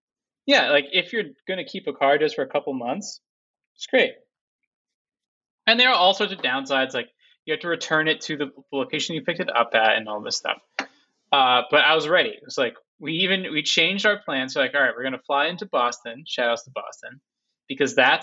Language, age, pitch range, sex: English, 20-39, 130-195 Hz, male